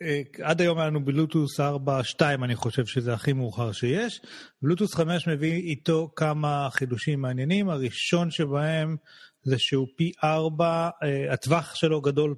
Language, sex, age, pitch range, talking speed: Hebrew, male, 30-49, 135-165 Hz, 135 wpm